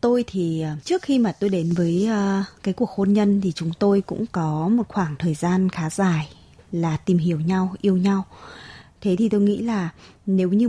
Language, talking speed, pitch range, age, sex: Vietnamese, 200 wpm, 175-220 Hz, 20-39, female